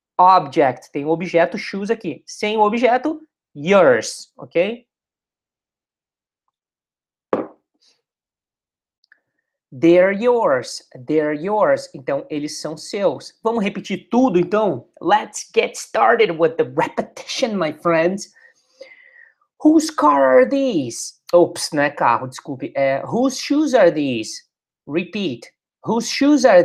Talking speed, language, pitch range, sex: 110 wpm, English, 160-260 Hz, male